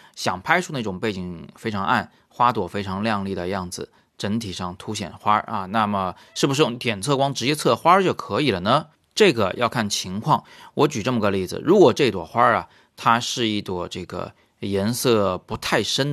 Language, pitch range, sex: Chinese, 95-120 Hz, male